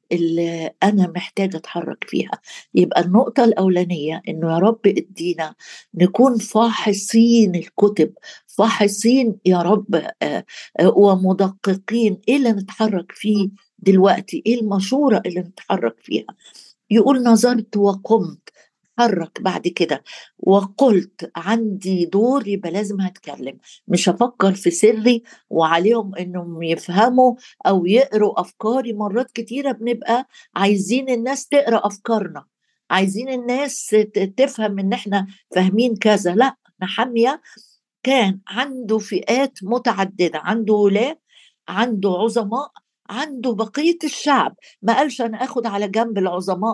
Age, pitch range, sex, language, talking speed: 60-79, 185-235 Hz, female, Arabic, 110 wpm